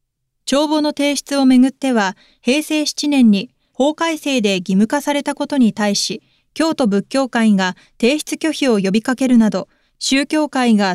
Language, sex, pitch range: Japanese, female, 195-275 Hz